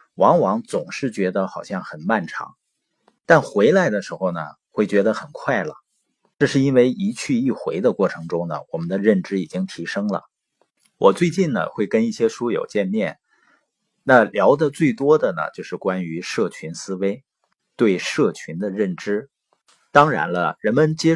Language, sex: Chinese, male